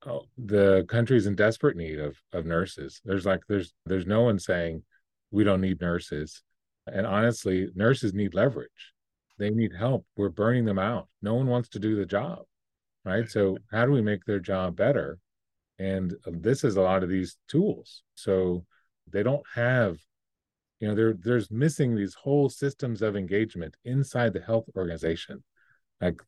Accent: American